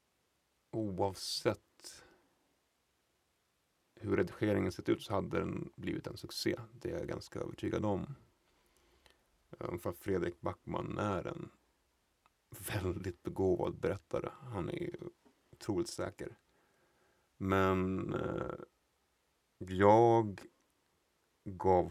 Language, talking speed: Swedish, 90 wpm